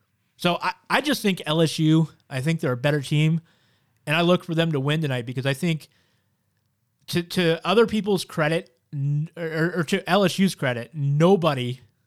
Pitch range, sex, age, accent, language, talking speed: 130-165 Hz, male, 30-49, American, English, 170 wpm